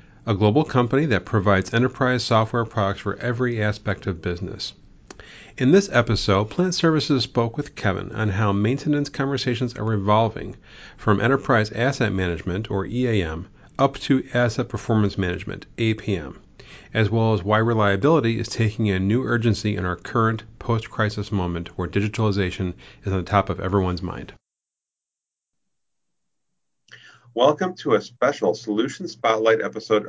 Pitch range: 100-125 Hz